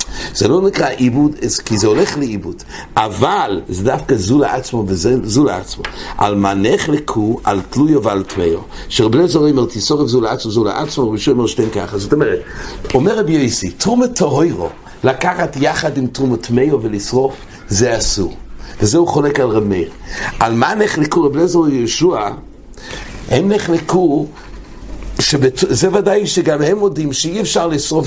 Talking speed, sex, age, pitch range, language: 150 wpm, male, 60-79, 125-170 Hz, English